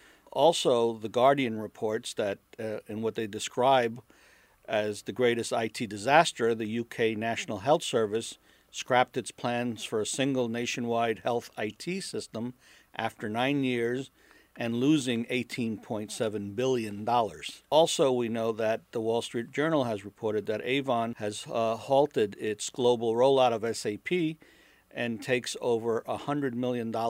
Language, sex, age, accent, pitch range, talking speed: English, male, 50-69, American, 110-135 Hz, 140 wpm